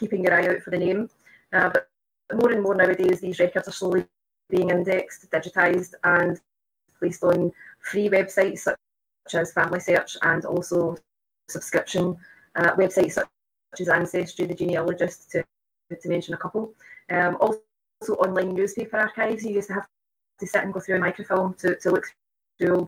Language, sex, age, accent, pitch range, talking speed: English, female, 20-39, British, 180-205 Hz, 170 wpm